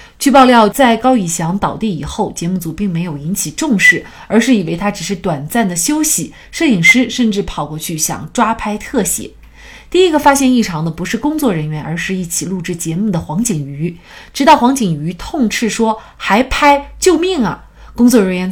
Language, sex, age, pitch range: Chinese, female, 30-49, 170-235 Hz